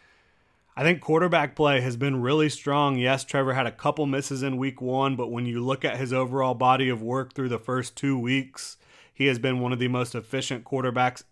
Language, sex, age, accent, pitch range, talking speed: English, male, 30-49, American, 125-140 Hz, 215 wpm